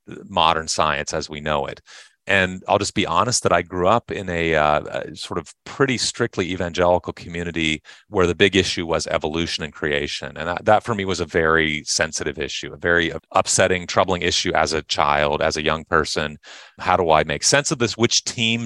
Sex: male